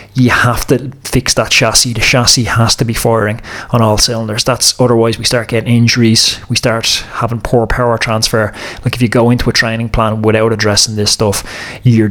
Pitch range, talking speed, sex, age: 105-120 Hz, 200 wpm, male, 20-39